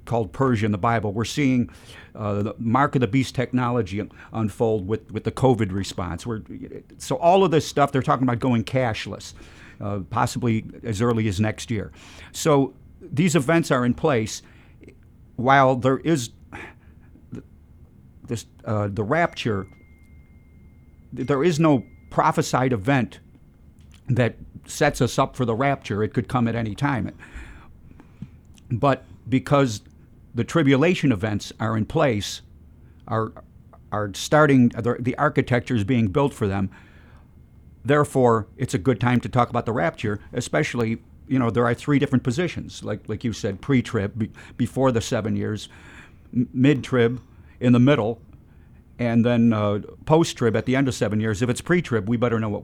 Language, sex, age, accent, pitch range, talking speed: English, male, 50-69, American, 105-130 Hz, 155 wpm